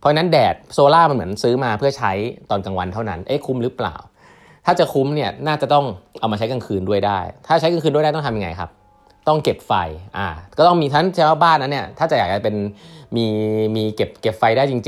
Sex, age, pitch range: male, 20-39, 100-140 Hz